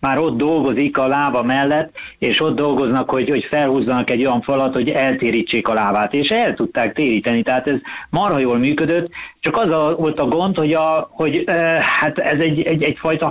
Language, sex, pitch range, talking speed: Hungarian, male, 125-155 Hz, 195 wpm